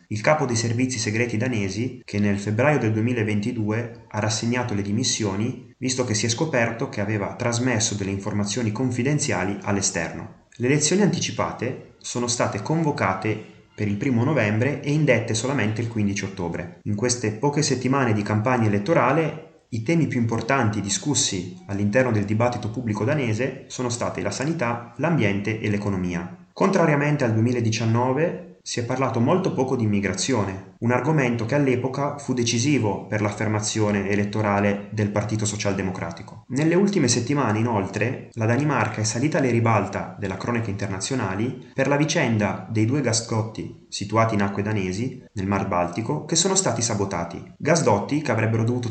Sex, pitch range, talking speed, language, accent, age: male, 105-130 Hz, 150 wpm, Italian, native, 30-49